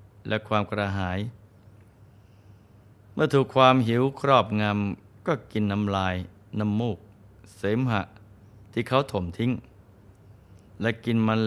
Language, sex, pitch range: Thai, male, 100-115 Hz